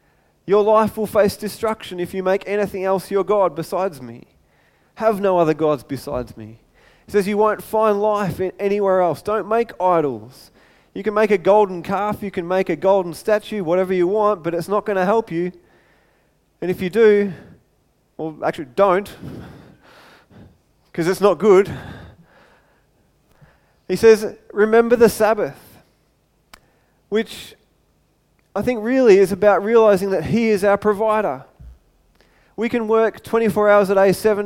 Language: English